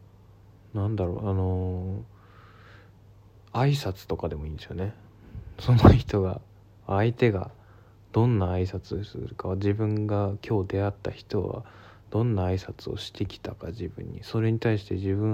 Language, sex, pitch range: Japanese, male, 100-105 Hz